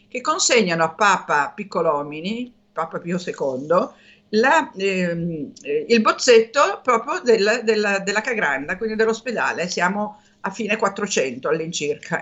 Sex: female